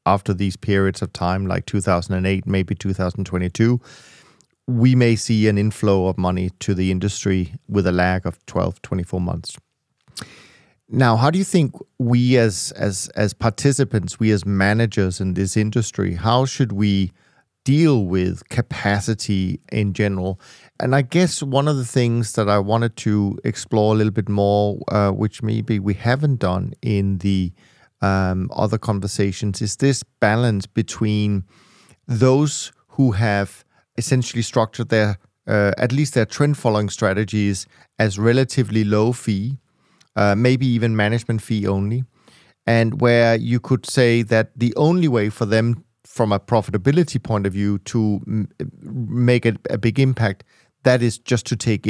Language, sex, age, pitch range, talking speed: English, male, 30-49, 100-120 Hz, 155 wpm